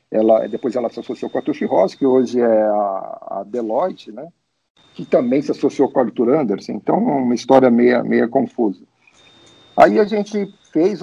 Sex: male